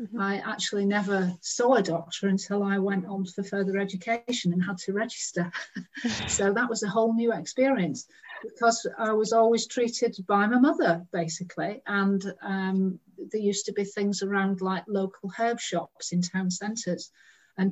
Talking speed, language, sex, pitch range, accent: 165 wpm, English, female, 185-210 Hz, British